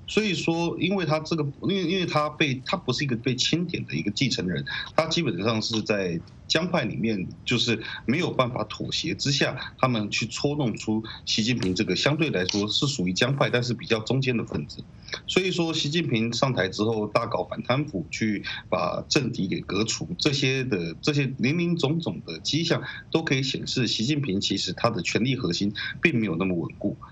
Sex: male